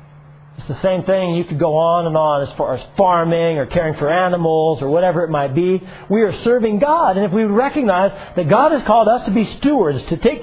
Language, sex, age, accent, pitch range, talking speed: English, male, 40-59, American, 160-230 Hz, 235 wpm